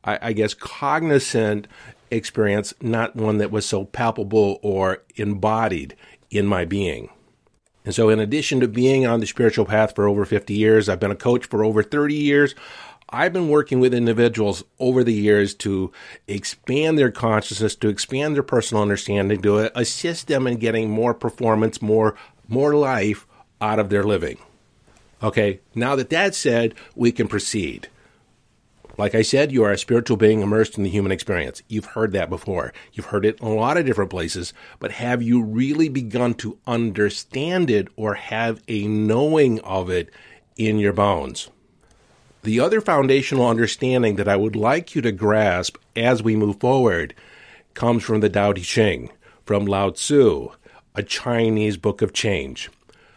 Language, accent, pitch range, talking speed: English, American, 105-125 Hz, 165 wpm